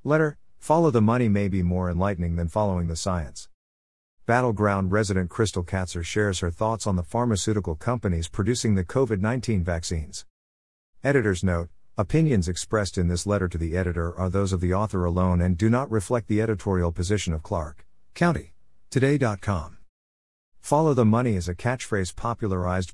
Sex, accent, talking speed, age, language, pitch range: male, American, 160 wpm, 50-69, English, 90-115 Hz